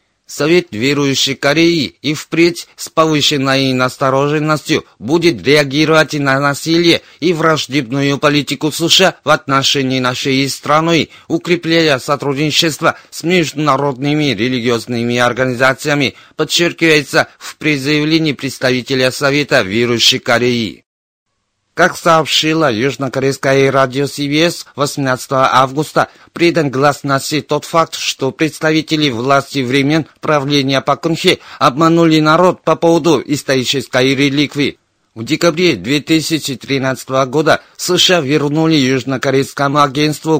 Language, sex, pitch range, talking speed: Russian, male, 135-155 Hz, 95 wpm